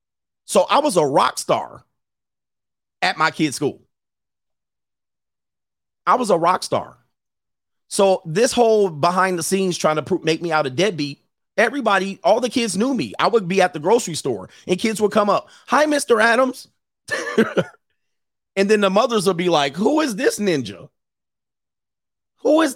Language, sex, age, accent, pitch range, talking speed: English, male, 30-49, American, 145-210 Hz, 165 wpm